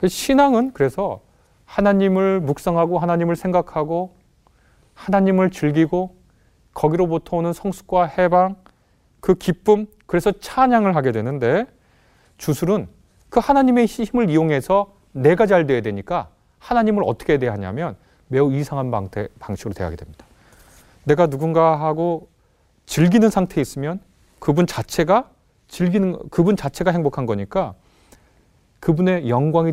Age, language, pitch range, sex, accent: 30-49, Korean, 135-195 Hz, male, native